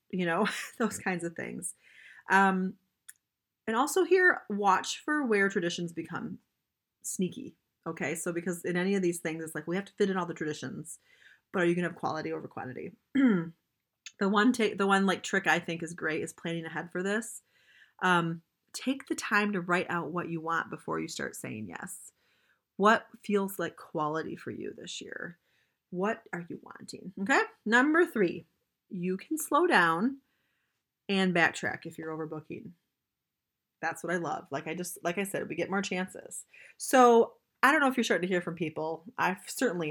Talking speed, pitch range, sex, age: 190 wpm, 170-235 Hz, female, 30-49